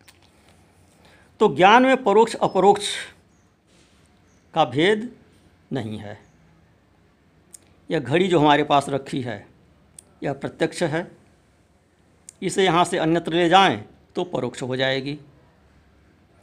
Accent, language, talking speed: native, Hindi, 105 wpm